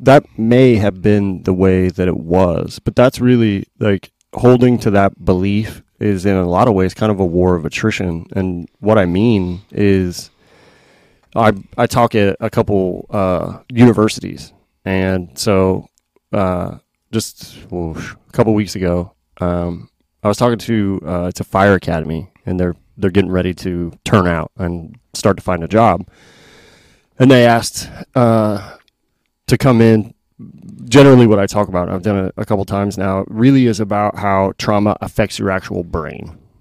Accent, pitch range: American, 95-110 Hz